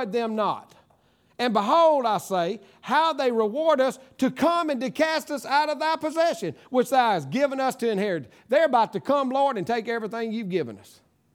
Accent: American